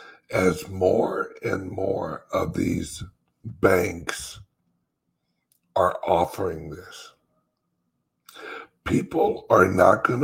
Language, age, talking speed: English, 60-79, 80 wpm